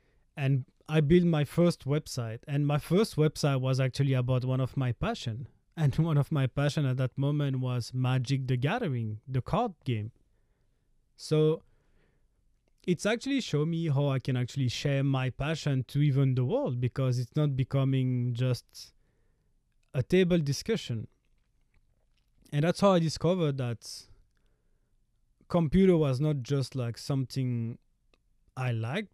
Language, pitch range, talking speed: English, 120-145 Hz, 145 wpm